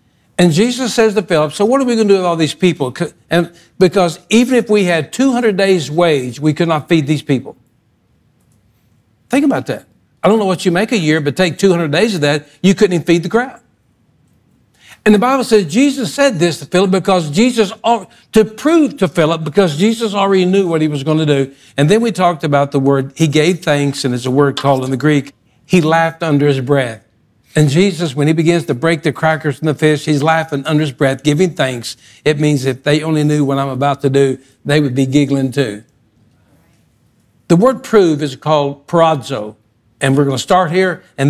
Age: 60-79